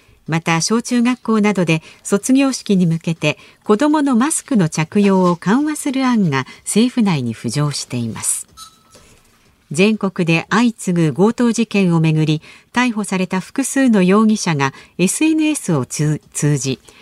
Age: 50-69